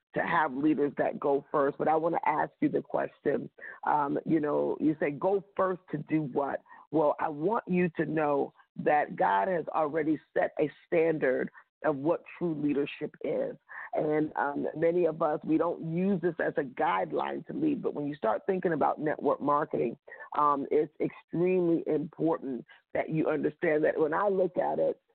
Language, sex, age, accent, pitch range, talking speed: English, female, 40-59, American, 150-190 Hz, 185 wpm